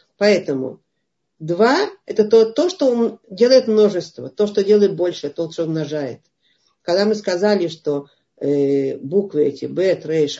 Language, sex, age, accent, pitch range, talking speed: Russian, female, 50-69, native, 150-195 Hz, 140 wpm